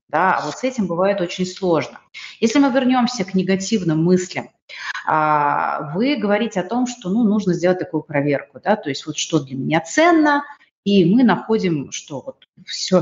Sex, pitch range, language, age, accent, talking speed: female, 155-220 Hz, Russian, 30-49, native, 160 wpm